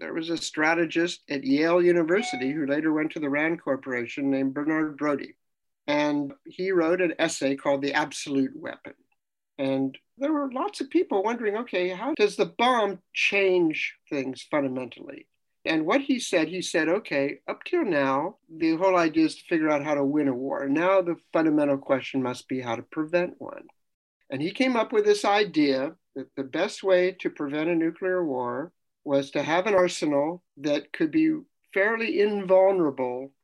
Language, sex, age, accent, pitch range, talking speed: English, male, 60-79, American, 140-220 Hz, 180 wpm